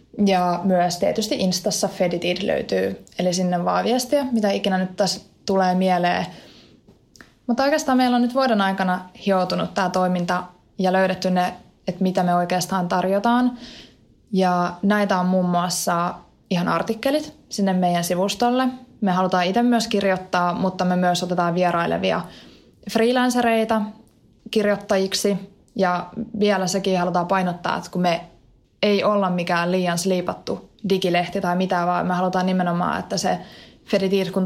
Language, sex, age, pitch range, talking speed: Finnish, female, 20-39, 180-205 Hz, 140 wpm